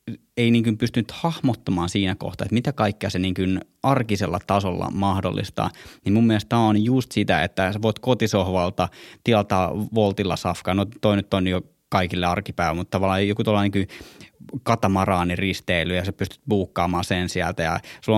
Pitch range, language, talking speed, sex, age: 95-110 Hz, Finnish, 165 wpm, male, 20-39